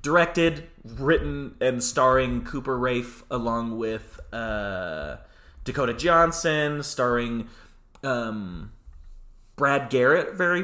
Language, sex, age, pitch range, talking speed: English, male, 30-49, 110-150 Hz, 90 wpm